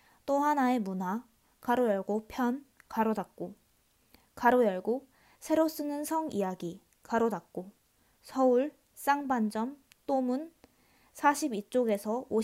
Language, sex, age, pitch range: Korean, female, 20-39, 210-270 Hz